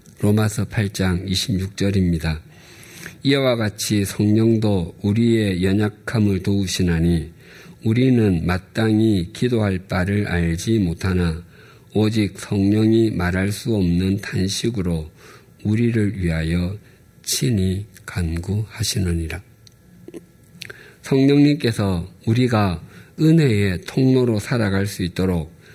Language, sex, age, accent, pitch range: Korean, male, 50-69, native, 95-115 Hz